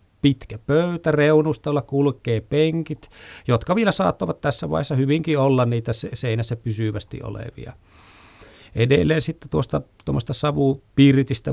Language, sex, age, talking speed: Finnish, male, 30-49, 105 wpm